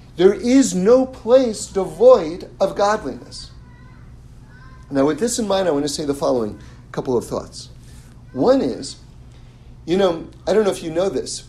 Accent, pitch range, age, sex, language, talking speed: American, 150-225 Hz, 50-69, male, English, 165 wpm